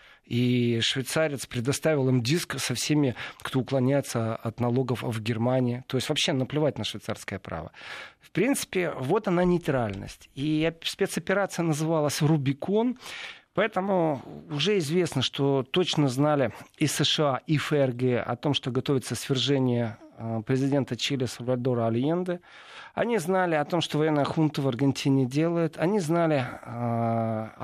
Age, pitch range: 40-59, 125-160 Hz